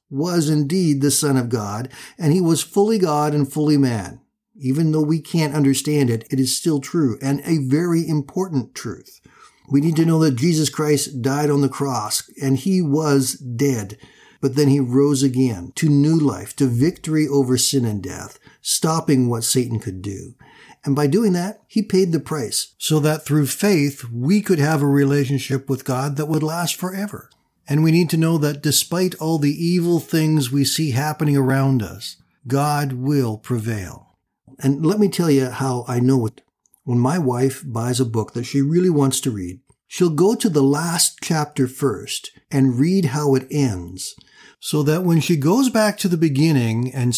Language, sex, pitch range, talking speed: English, male, 130-160 Hz, 190 wpm